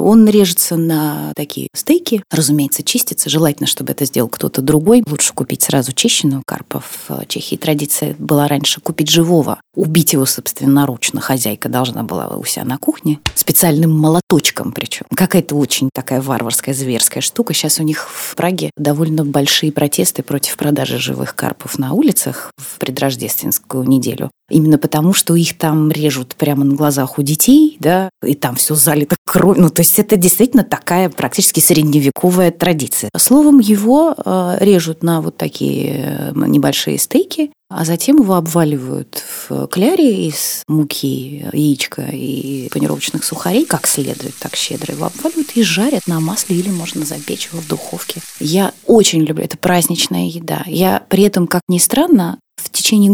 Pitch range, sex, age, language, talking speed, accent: 145-195 Hz, female, 20-39, Russian, 155 wpm, native